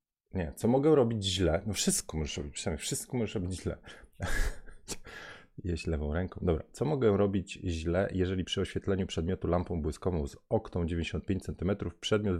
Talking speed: 160 wpm